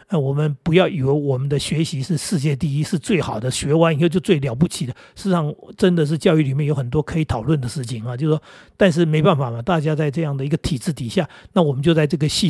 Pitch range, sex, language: 140-180 Hz, male, Chinese